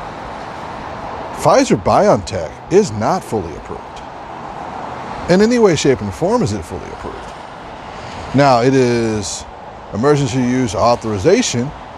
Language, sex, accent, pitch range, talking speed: English, male, American, 100-160 Hz, 105 wpm